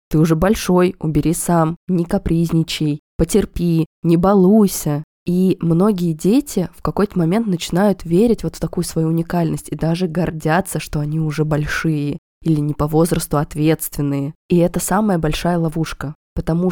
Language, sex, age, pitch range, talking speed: Russian, female, 20-39, 155-180 Hz, 145 wpm